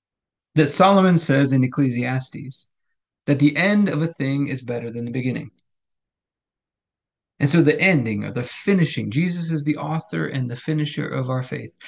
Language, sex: English, male